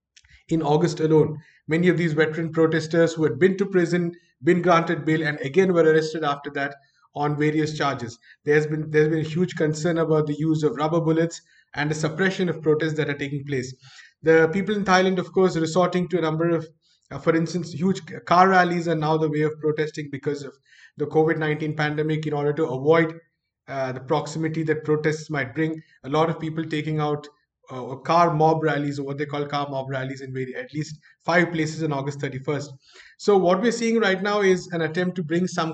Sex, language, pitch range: male, English, 145-165 Hz